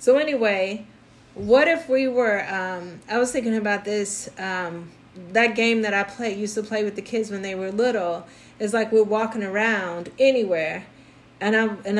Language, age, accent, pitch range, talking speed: English, 30-49, American, 185-220 Hz, 185 wpm